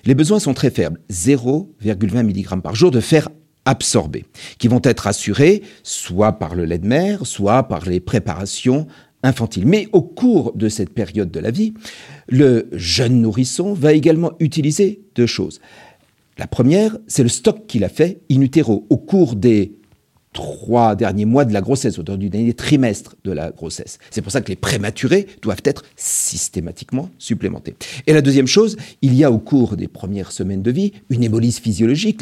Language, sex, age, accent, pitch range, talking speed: French, male, 50-69, French, 105-155 Hz, 180 wpm